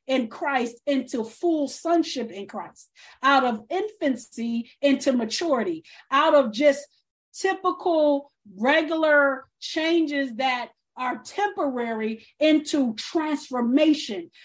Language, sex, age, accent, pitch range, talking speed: English, female, 40-59, American, 235-305 Hz, 95 wpm